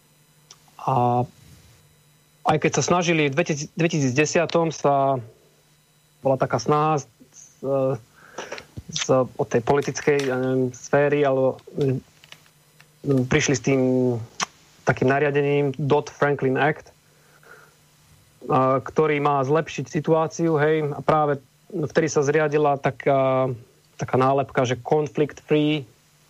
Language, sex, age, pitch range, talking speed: Slovak, male, 30-49, 140-160 Hz, 105 wpm